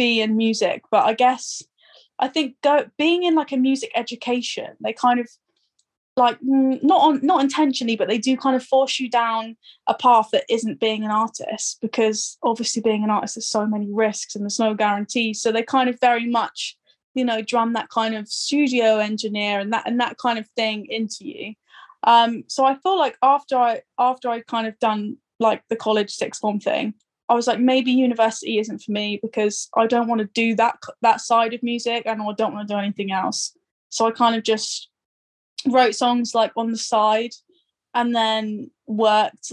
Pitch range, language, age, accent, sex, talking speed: 215-250 Hz, English, 10-29, British, female, 200 wpm